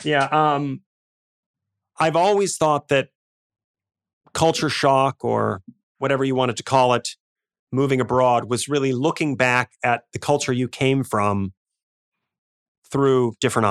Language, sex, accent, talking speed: English, male, American, 125 wpm